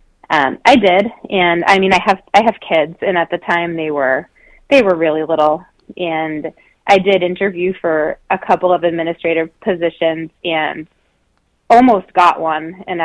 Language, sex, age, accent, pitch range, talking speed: English, female, 20-39, American, 160-190 Hz, 165 wpm